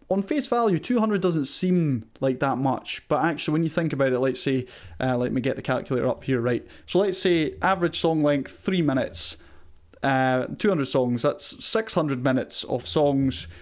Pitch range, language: 130-175 Hz, English